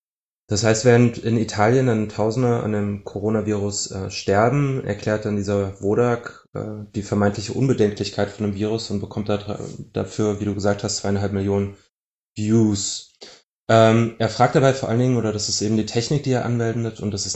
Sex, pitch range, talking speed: male, 95-115 Hz, 185 wpm